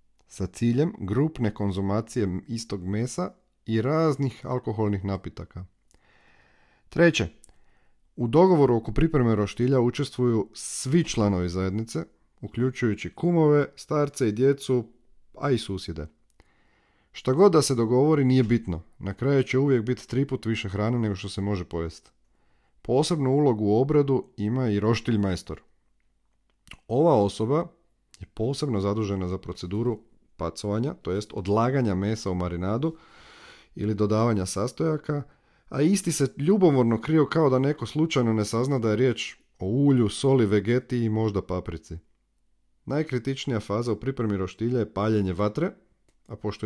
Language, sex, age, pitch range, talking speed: Croatian, male, 40-59, 100-135 Hz, 130 wpm